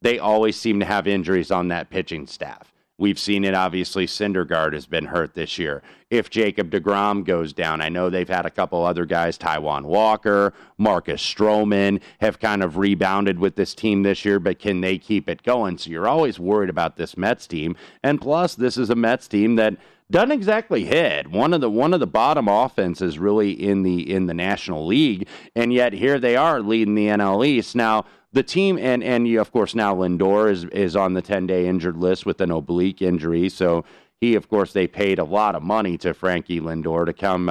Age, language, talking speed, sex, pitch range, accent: 30-49, English, 210 wpm, male, 90-110 Hz, American